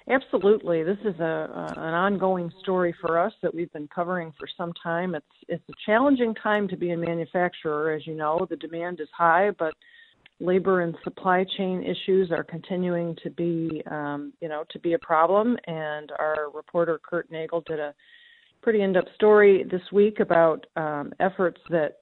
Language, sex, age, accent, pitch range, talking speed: English, female, 40-59, American, 155-185 Hz, 180 wpm